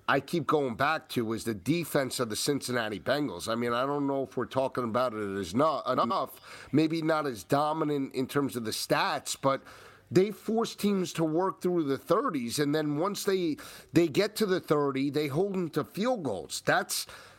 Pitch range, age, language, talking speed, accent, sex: 140-175 Hz, 40-59, English, 205 wpm, American, male